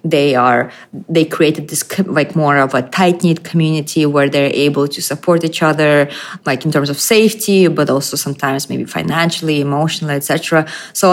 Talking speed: 175 wpm